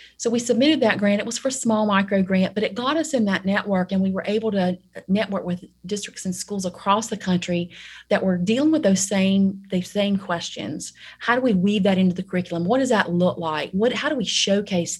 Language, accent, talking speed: English, American, 230 wpm